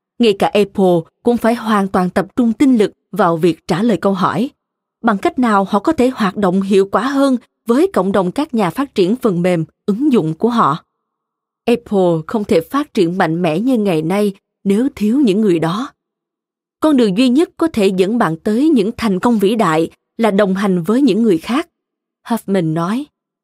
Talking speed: 200 wpm